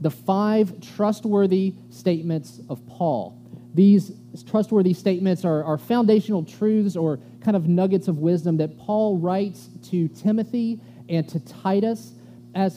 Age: 30-49